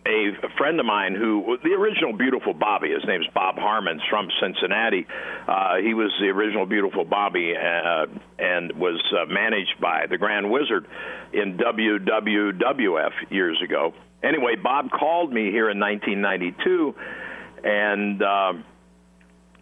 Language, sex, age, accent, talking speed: English, male, 60-79, American, 130 wpm